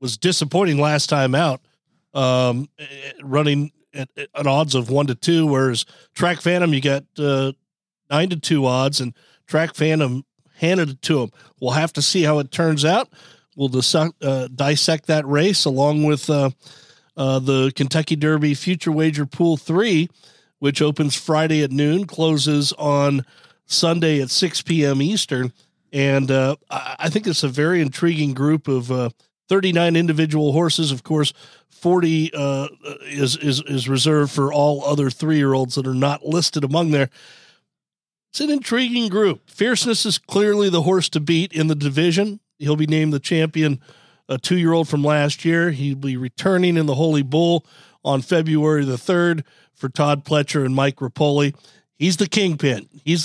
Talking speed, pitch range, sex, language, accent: 160 wpm, 140-165 Hz, male, English, American